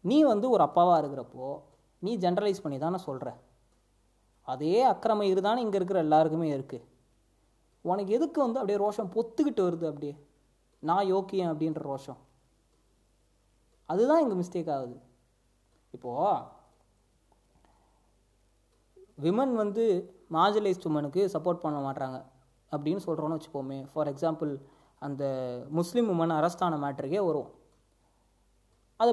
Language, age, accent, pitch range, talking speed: Tamil, 30-49, native, 140-205 Hz, 105 wpm